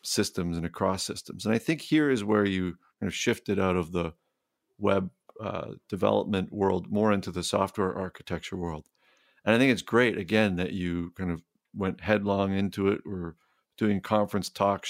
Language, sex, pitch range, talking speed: English, male, 95-110 Hz, 180 wpm